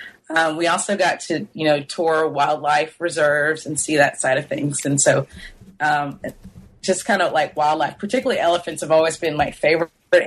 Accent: American